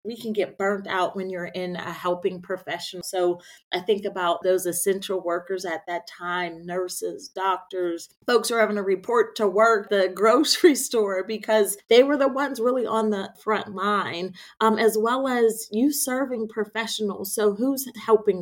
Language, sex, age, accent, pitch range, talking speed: English, female, 30-49, American, 185-230 Hz, 175 wpm